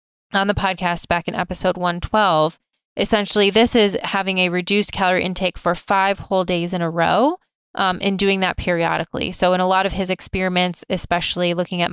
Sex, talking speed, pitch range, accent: female, 185 wpm, 175-205 Hz, American